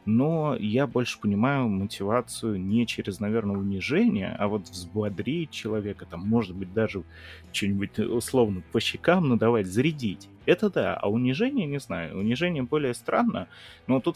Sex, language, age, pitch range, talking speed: male, Russian, 20-39, 100-125 Hz, 145 wpm